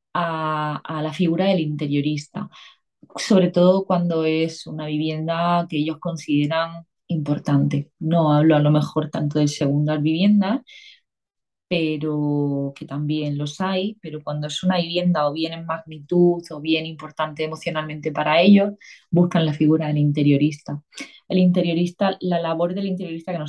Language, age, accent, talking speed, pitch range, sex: Spanish, 20-39, Spanish, 150 wpm, 150-185 Hz, female